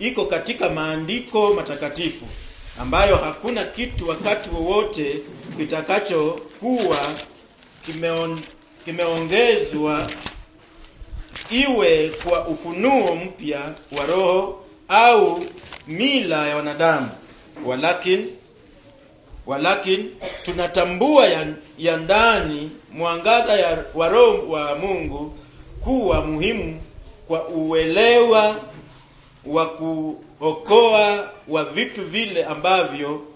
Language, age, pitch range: English, 40-59, 155-205 Hz